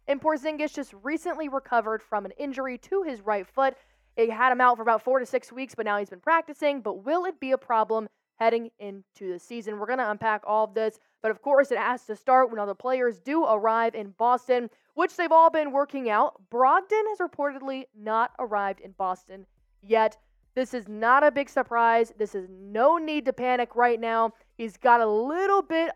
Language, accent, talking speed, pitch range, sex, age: English, American, 210 wpm, 225-285 Hz, female, 20-39